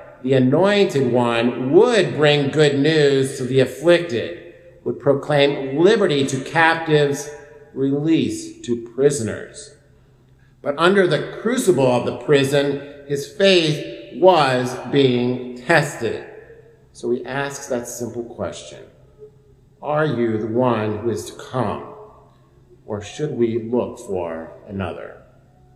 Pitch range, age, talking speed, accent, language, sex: 120-145 Hz, 50-69, 115 wpm, American, English, male